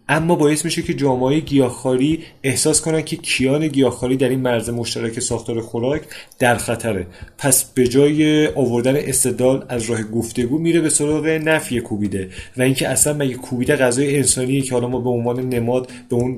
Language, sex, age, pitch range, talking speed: Persian, male, 30-49, 120-145 Hz, 175 wpm